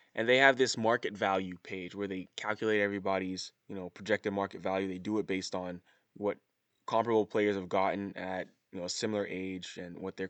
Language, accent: English, American